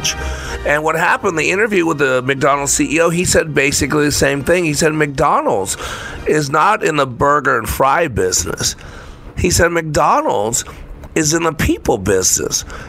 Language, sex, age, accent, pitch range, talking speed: English, male, 50-69, American, 125-160 Hz, 160 wpm